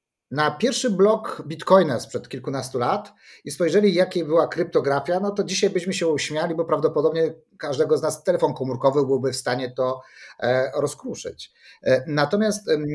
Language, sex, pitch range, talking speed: Polish, male, 150-215 Hz, 145 wpm